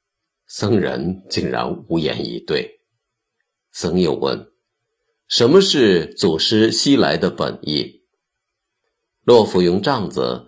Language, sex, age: Chinese, male, 50-69